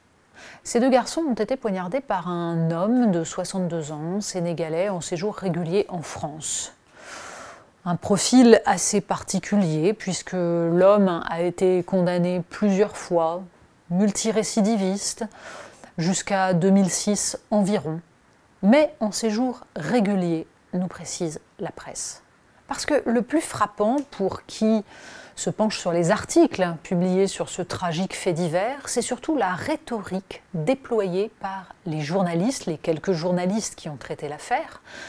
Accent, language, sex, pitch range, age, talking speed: French, French, female, 170-215 Hz, 30-49, 125 wpm